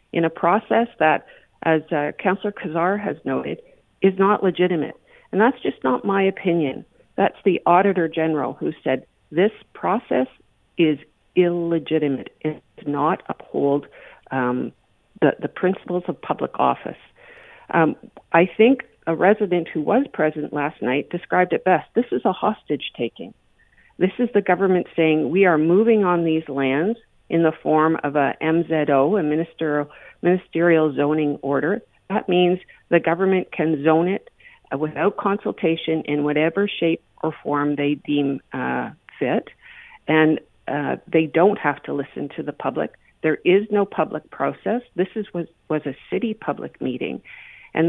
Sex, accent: female, American